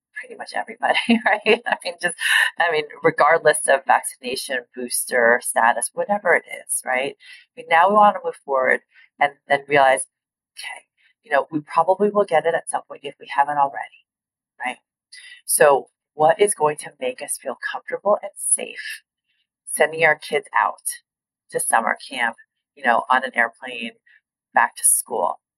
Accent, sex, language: American, female, English